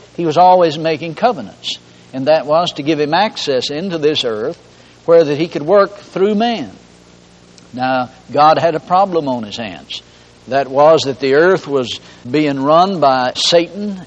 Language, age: English, 60-79